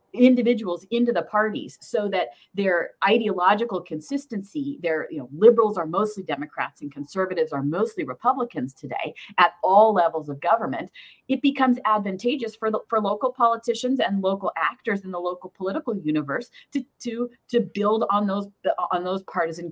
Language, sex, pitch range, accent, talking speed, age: English, female, 170-245 Hz, American, 160 wpm, 30-49